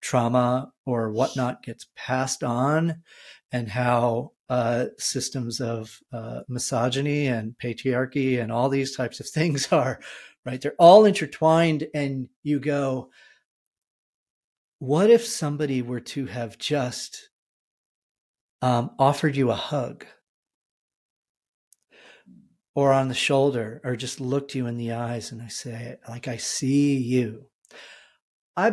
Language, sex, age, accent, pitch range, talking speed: English, male, 40-59, American, 120-145 Hz, 125 wpm